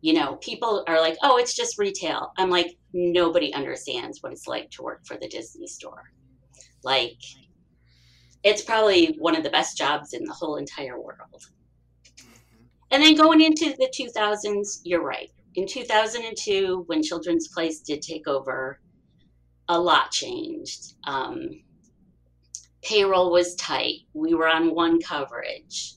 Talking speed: 145 wpm